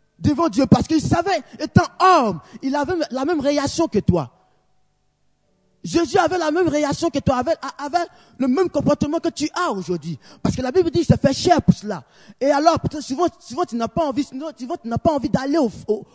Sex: male